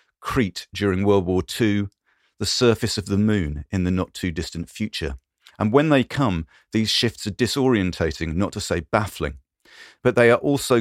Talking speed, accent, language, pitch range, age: 165 wpm, British, English, 90-120 Hz, 40-59